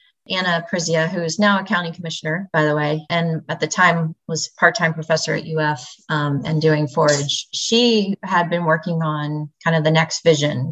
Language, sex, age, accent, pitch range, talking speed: English, female, 30-49, American, 155-170 Hz, 190 wpm